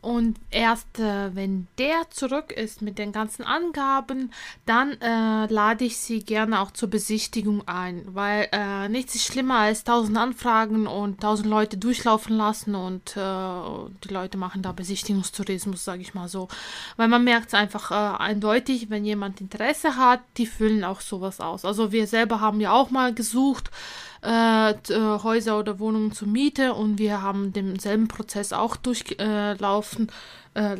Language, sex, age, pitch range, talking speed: German, female, 20-39, 200-235 Hz, 165 wpm